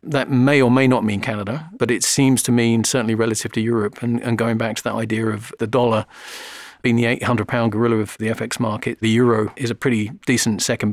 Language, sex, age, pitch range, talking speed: English, male, 40-59, 110-125 Hz, 225 wpm